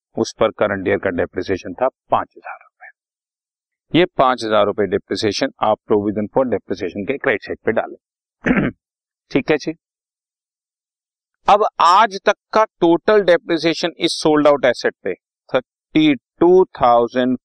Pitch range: 105-155 Hz